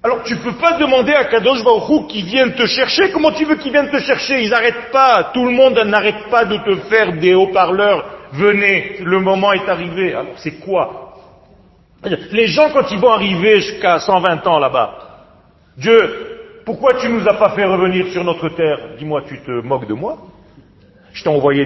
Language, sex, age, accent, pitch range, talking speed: French, male, 40-59, French, 190-310 Hz, 200 wpm